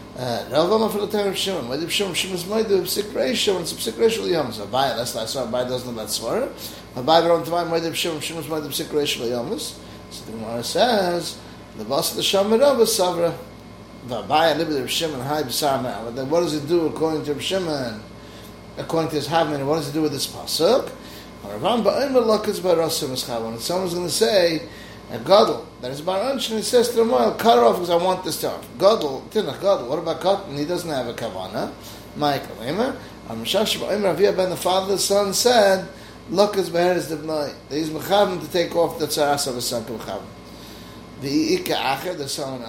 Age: 30-49